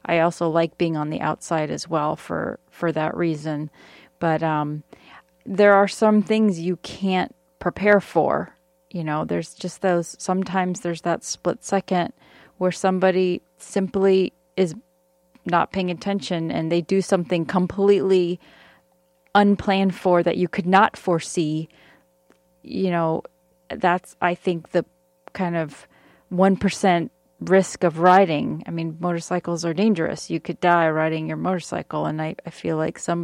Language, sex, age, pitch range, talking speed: English, female, 30-49, 165-185 Hz, 145 wpm